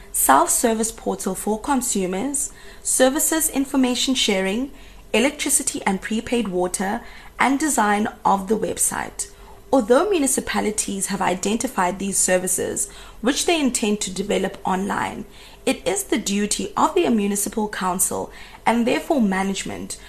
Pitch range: 190-255 Hz